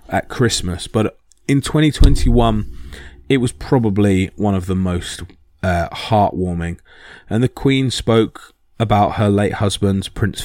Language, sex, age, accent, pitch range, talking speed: English, male, 20-39, British, 95-120 Hz, 130 wpm